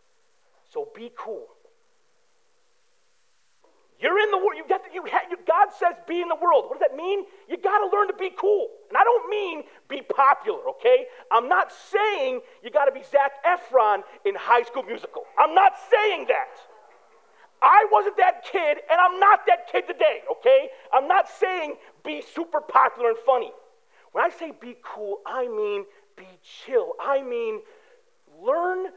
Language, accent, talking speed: English, American, 175 wpm